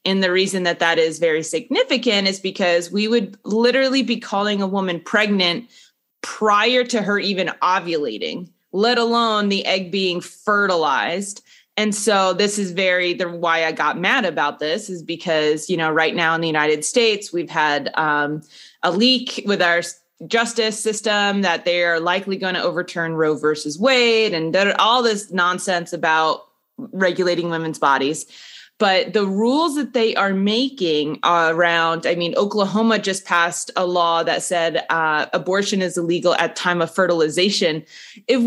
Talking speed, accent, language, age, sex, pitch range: 160 wpm, American, English, 20-39, female, 170-220 Hz